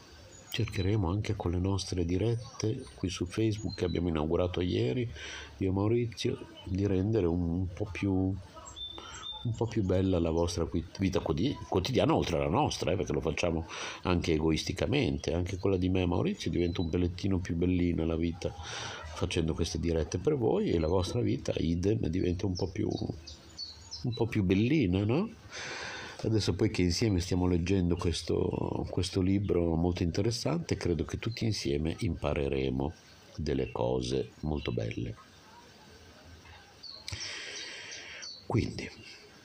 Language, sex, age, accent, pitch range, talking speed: Italian, male, 50-69, native, 80-105 Hz, 135 wpm